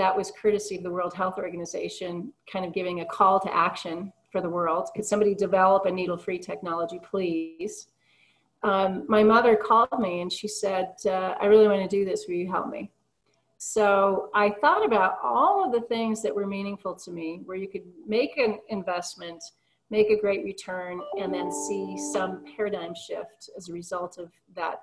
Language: English